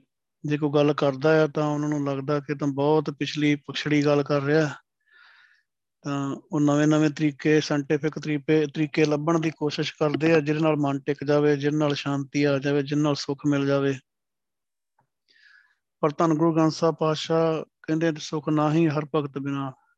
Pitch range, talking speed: 145-160 Hz, 165 wpm